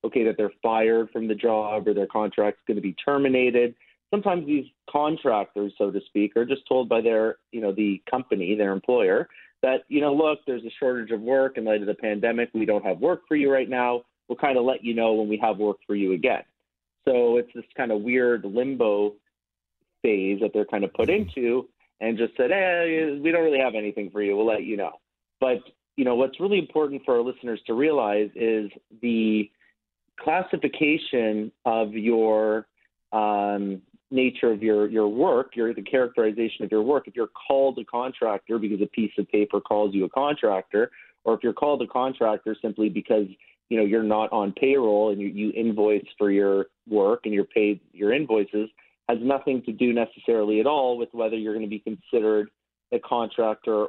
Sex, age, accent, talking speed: male, 30-49, American, 200 wpm